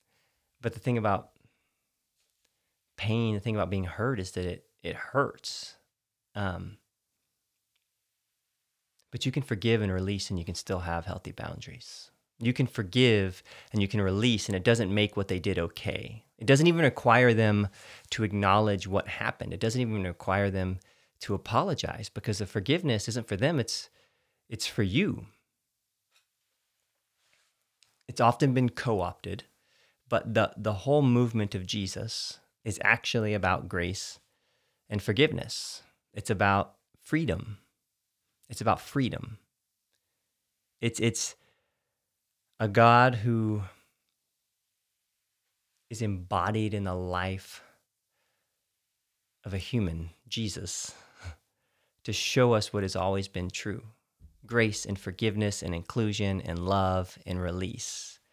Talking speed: 130 wpm